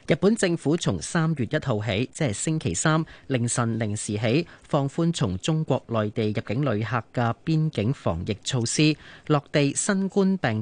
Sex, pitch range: male, 110-155 Hz